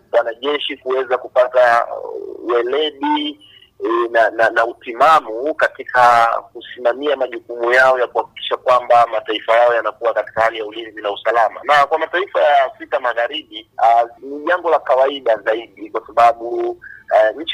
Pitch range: 120-145 Hz